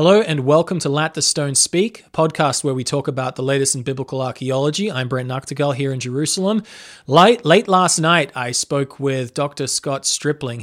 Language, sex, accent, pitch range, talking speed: English, male, Australian, 135-165 Hz, 200 wpm